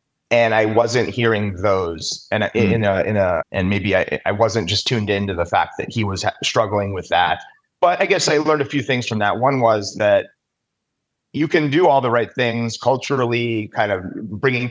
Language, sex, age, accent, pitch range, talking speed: English, male, 30-49, American, 100-120 Hz, 210 wpm